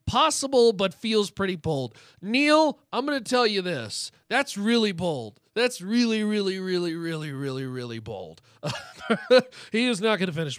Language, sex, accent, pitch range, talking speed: English, male, American, 130-190 Hz, 165 wpm